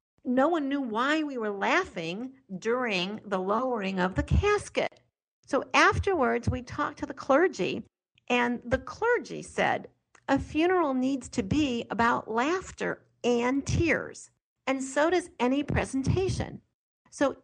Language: English